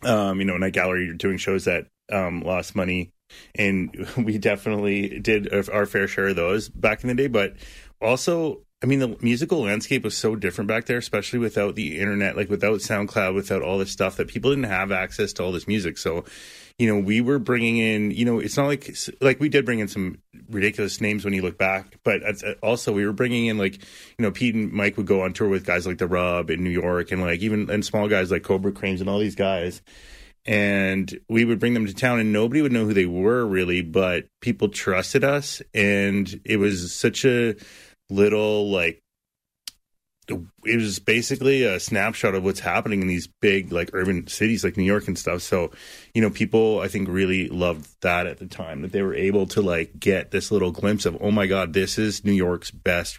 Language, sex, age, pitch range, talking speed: English, male, 30-49, 90-110 Hz, 220 wpm